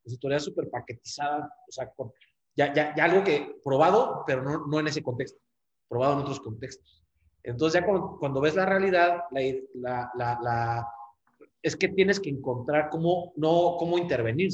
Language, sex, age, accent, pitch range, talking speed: Spanish, male, 30-49, Mexican, 130-175 Hz, 175 wpm